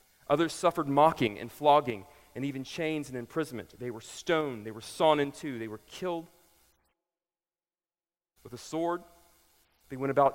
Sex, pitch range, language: male, 115-175 Hz, English